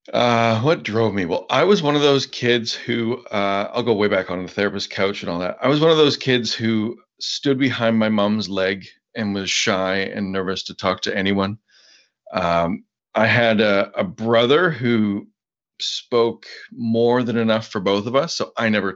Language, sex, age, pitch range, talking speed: English, male, 30-49, 100-120 Hz, 200 wpm